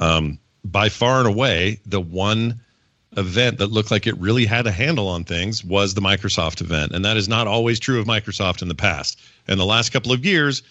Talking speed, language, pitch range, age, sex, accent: 220 wpm, English, 95-115 Hz, 40-59, male, American